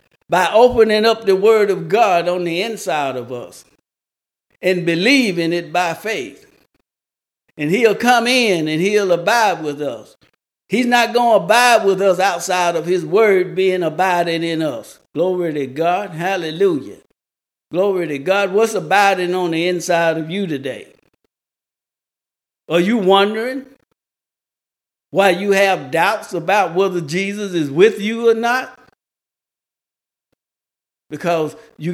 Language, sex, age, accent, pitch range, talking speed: English, male, 60-79, American, 165-210 Hz, 135 wpm